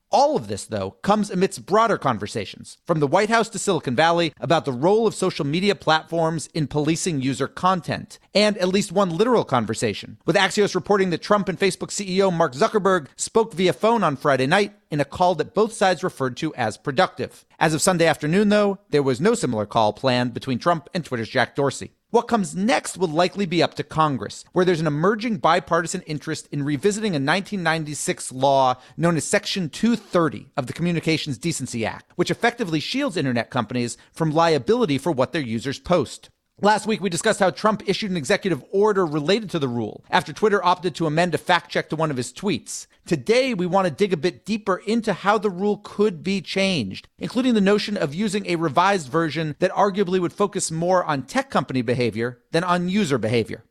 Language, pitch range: English, 145-200 Hz